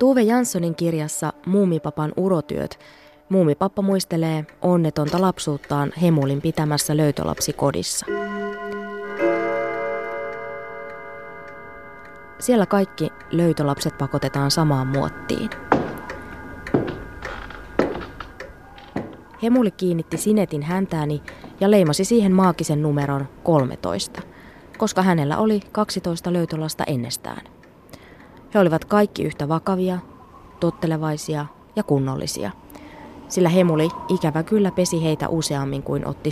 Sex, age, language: female, 20-39, Finnish